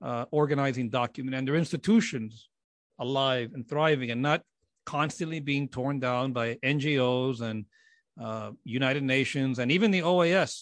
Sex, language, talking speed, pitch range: male, English, 140 wpm, 120-150 Hz